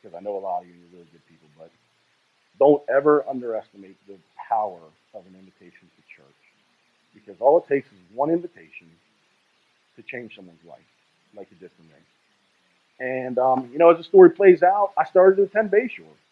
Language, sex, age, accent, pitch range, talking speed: Italian, male, 40-59, American, 105-160 Hz, 190 wpm